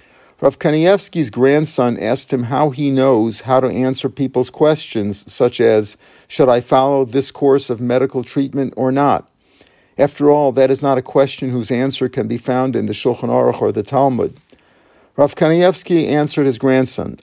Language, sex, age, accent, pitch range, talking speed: English, male, 50-69, American, 125-145 Hz, 170 wpm